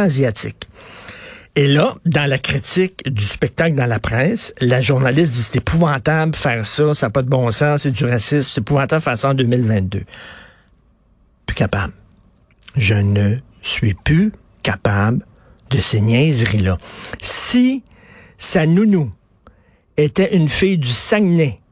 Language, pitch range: French, 130-195 Hz